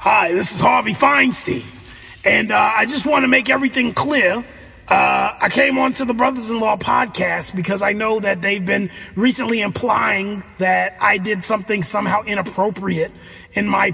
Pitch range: 195-235 Hz